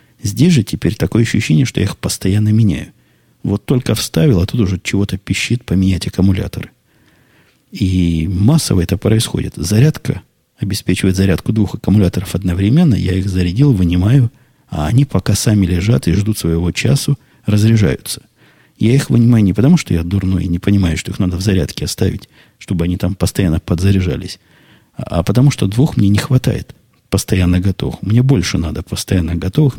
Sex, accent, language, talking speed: male, native, Russian, 160 wpm